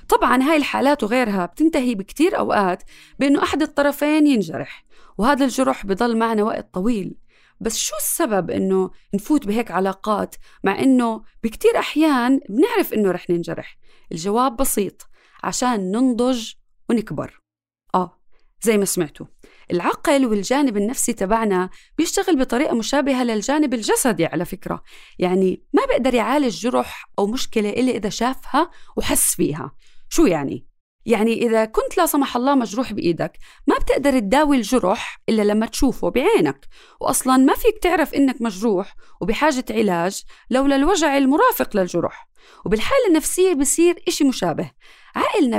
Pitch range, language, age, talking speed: 210-290 Hz, Arabic, 20-39, 130 wpm